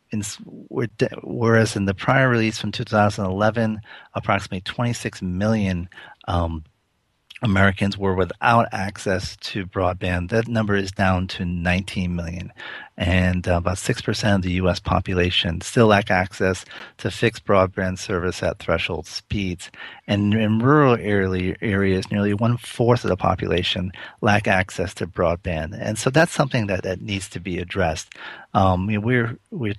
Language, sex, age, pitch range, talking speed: English, male, 40-59, 90-110 Hz, 145 wpm